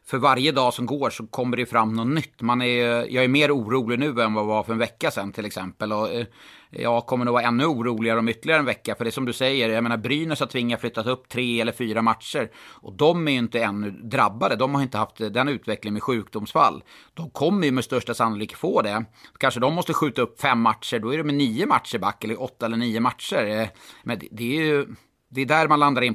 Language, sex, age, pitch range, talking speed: Swedish, male, 30-49, 115-150 Hz, 250 wpm